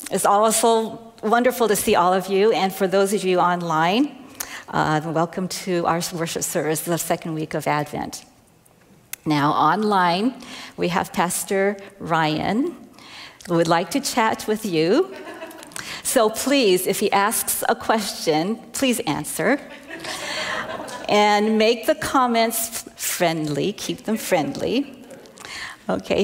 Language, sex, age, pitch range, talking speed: English, female, 50-69, 170-250 Hz, 130 wpm